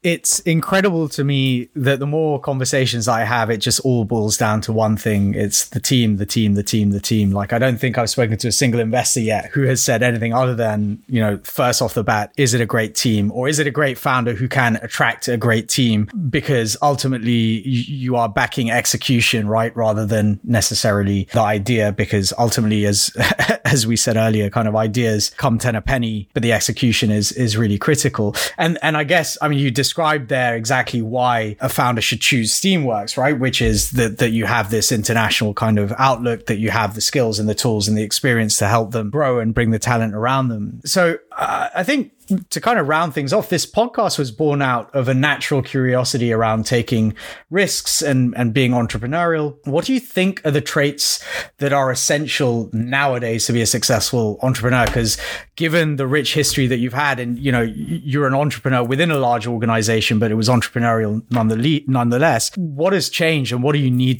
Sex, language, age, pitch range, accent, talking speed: male, English, 20-39, 110-140 Hz, British, 210 wpm